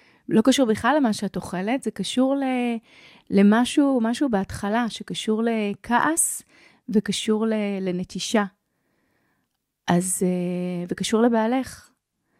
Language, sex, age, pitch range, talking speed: Hebrew, female, 30-49, 195-250 Hz, 95 wpm